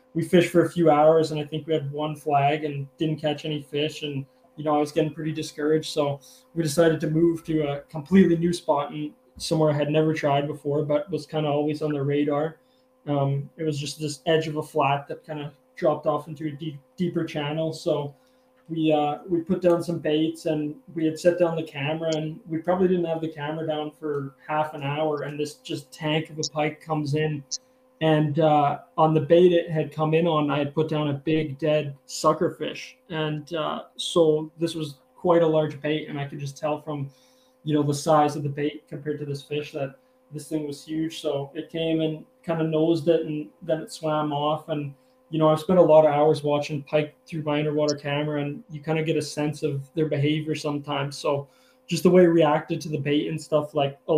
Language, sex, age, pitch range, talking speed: English, male, 20-39, 150-160 Hz, 230 wpm